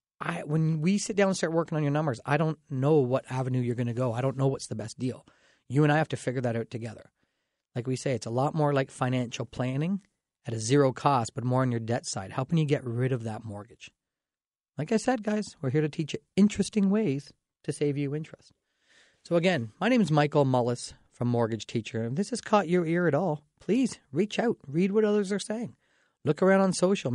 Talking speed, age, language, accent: 240 wpm, 40-59, English, American